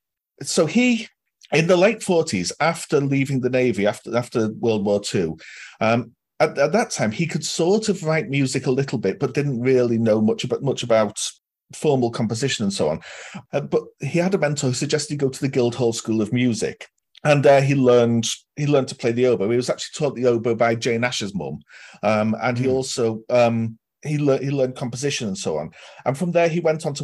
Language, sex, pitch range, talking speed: English, male, 115-150 Hz, 215 wpm